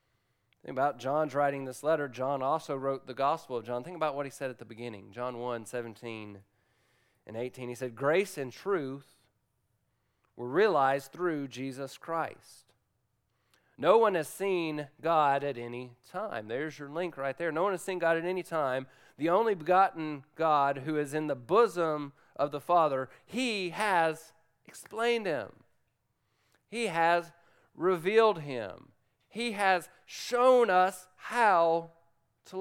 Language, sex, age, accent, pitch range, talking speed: English, male, 40-59, American, 130-175 Hz, 155 wpm